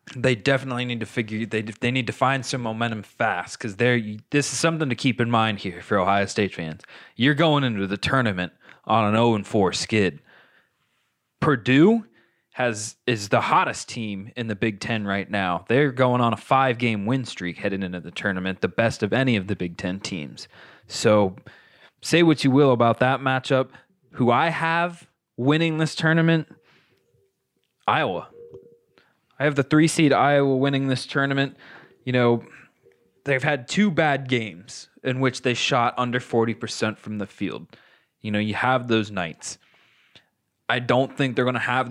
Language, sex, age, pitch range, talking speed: English, male, 20-39, 105-135 Hz, 175 wpm